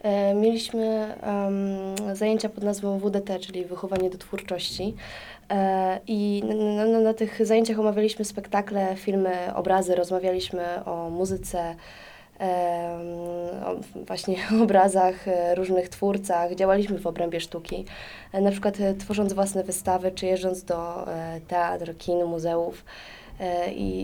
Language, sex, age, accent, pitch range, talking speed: Polish, female, 20-39, native, 180-200 Hz, 130 wpm